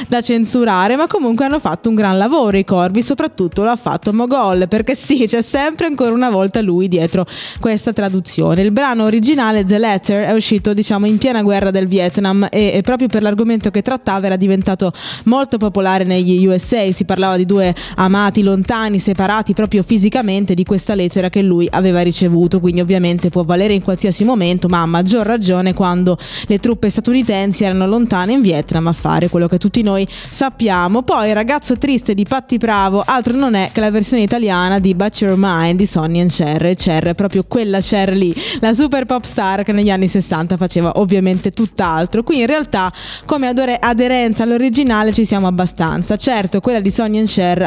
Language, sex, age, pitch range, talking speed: Italian, female, 20-39, 185-225 Hz, 190 wpm